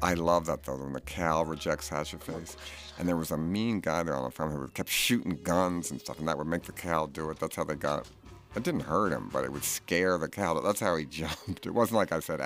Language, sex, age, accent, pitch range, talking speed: English, male, 50-69, American, 75-95 Hz, 275 wpm